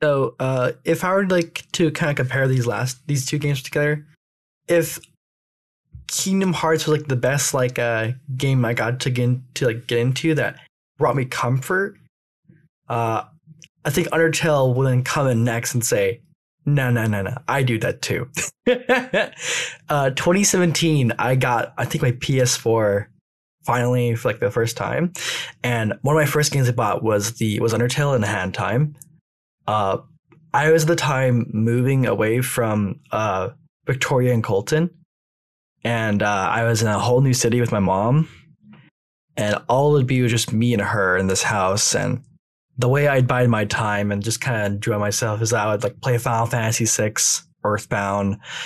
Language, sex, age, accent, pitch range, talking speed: English, male, 10-29, American, 115-150 Hz, 185 wpm